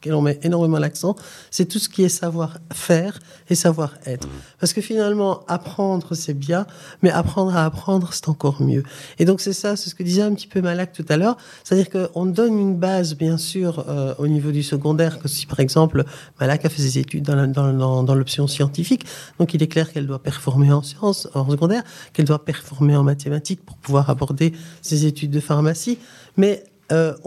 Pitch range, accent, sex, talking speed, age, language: 145-185 Hz, French, male, 210 wpm, 50-69, French